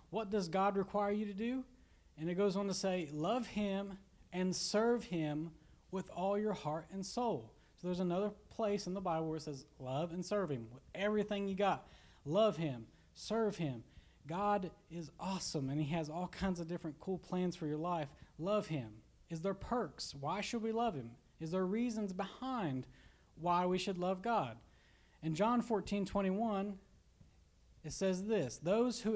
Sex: male